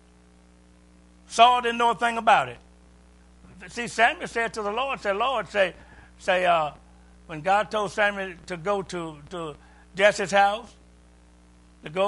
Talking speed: 150 wpm